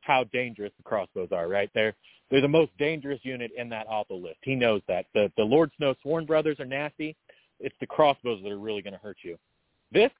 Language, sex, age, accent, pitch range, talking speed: English, male, 40-59, American, 115-155 Hz, 225 wpm